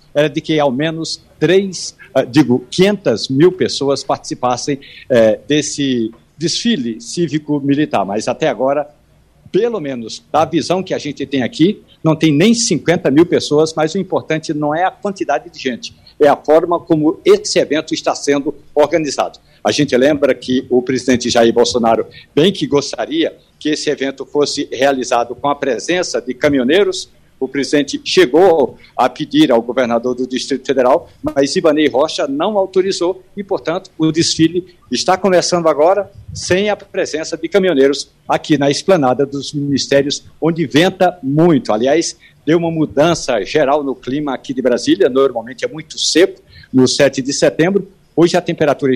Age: 60-79